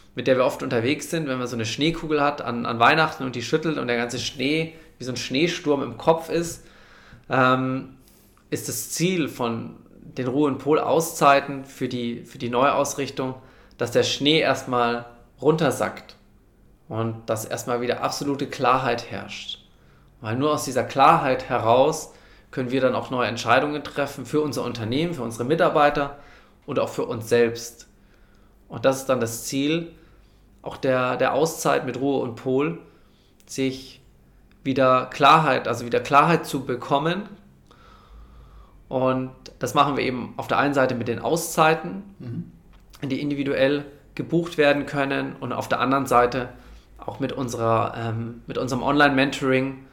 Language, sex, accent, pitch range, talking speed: German, male, German, 120-145 Hz, 155 wpm